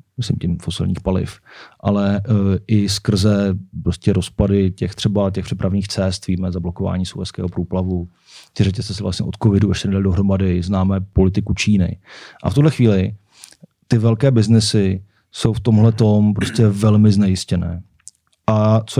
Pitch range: 95-115 Hz